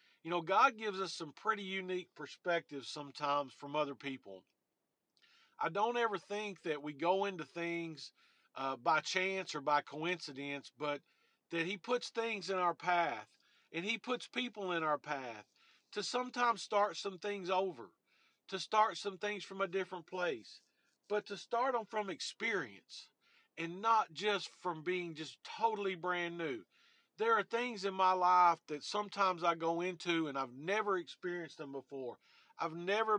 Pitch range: 165-205 Hz